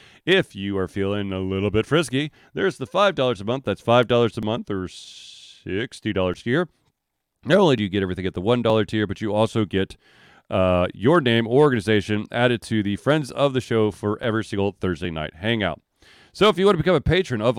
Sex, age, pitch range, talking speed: male, 40-59, 105-145 Hz, 210 wpm